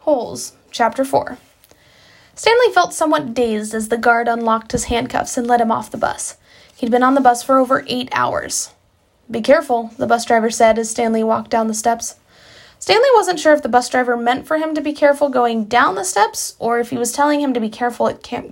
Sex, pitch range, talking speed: female, 235-290 Hz, 220 wpm